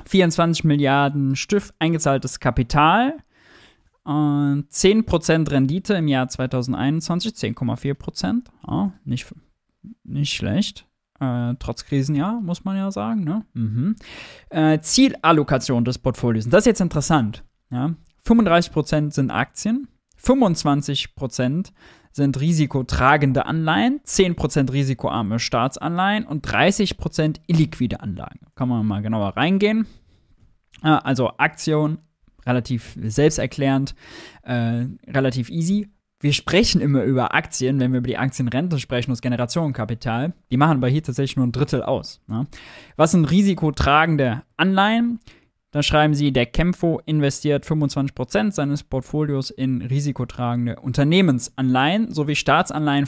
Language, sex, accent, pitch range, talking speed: German, male, German, 125-160 Hz, 115 wpm